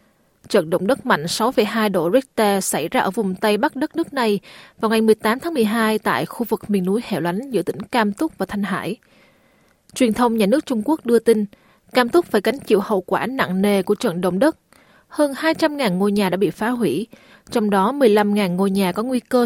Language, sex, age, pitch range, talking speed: Vietnamese, female, 20-39, 200-245 Hz, 220 wpm